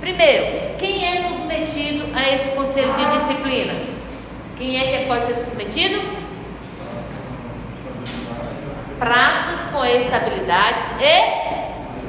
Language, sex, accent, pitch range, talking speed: Portuguese, female, Brazilian, 240-290 Hz, 95 wpm